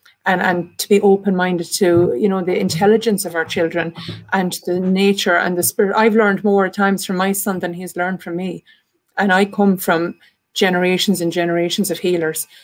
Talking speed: 190 wpm